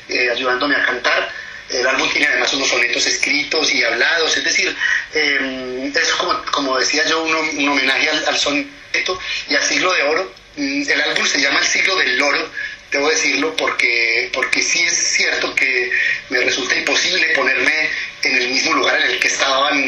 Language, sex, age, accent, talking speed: English, male, 30-49, Mexican, 185 wpm